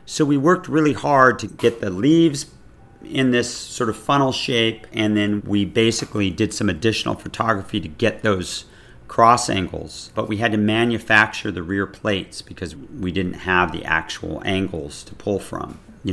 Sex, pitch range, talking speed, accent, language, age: male, 90-110 Hz, 175 wpm, American, English, 40-59